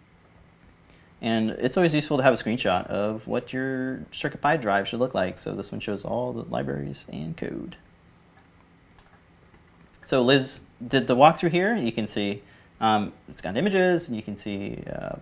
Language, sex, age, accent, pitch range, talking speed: English, male, 30-49, American, 85-110 Hz, 170 wpm